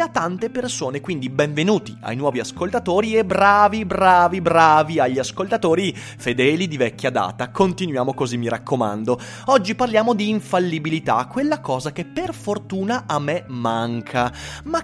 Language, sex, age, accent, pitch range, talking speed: Italian, male, 30-49, native, 125-200 Hz, 140 wpm